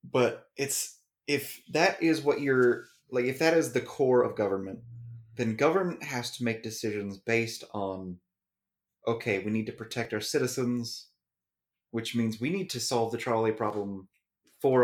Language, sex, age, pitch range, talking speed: English, male, 30-49, 110-125 Hz, 160 wpm